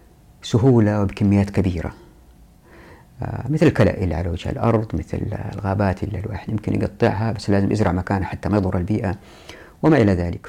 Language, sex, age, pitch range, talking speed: Arabic, female, 50-69, 100-125 Hz, 145 wpm